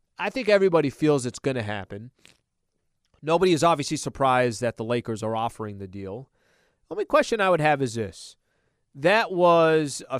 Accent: American